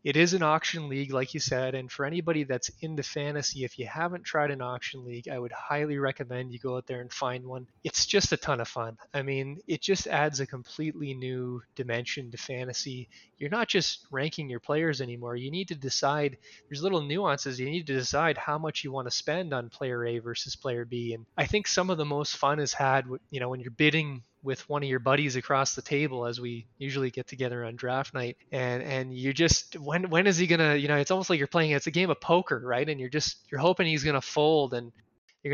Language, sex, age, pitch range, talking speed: English, male, 20-39, 130-155 Hz, 245 wpm